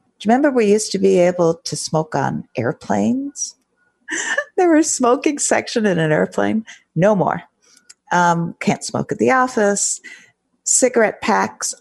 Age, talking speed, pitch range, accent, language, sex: 50-69, 150 wpm, 170-240 Hz, American, English, female